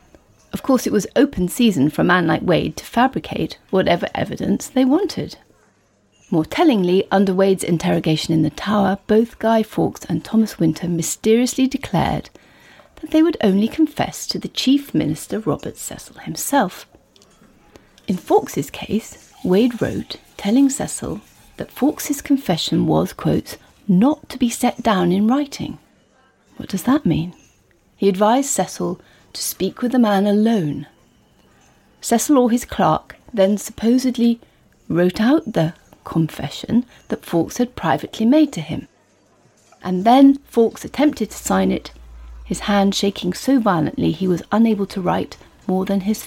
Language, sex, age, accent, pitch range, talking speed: English, female, 40-59, British, 180-260 Hz, 150 wpm